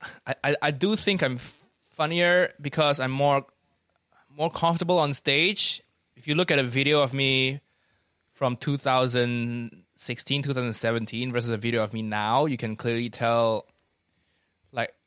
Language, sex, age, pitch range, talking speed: English, male, 20-39, 120-160 Hz, 155 wpm